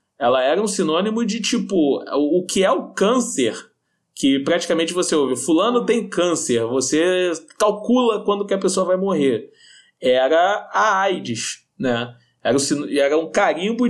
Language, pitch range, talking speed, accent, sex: Portuguese, 130-205 Hz, 140 wpm, Brazilian, male